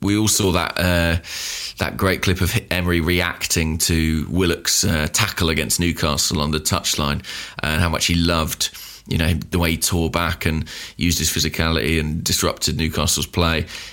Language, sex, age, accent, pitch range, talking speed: English, male, 20-39, British, 80-100 Hz, 170 wpm